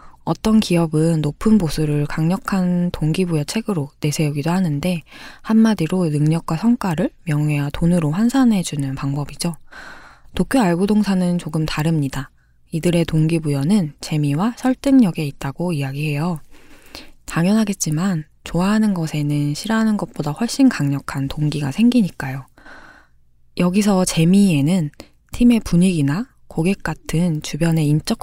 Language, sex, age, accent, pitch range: Korean, female, 20-39, native, 150-195 Hz